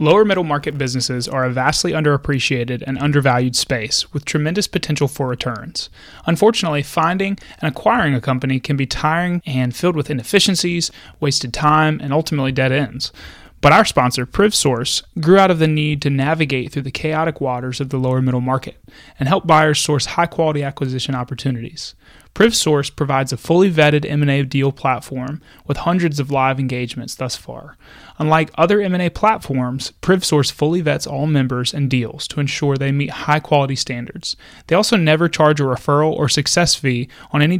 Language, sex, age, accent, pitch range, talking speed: English, male, 30-49, American, 130-155 Hz, 170 wpm